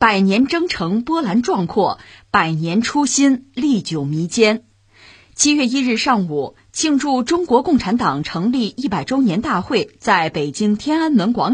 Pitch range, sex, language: 165-255 Hz, female, Chinese